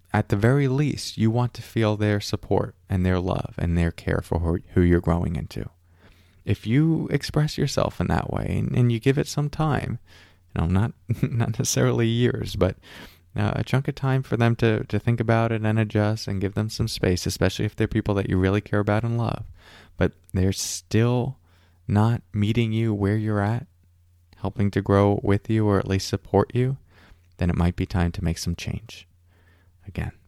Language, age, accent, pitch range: English, 20-39, American, 85-110 Hz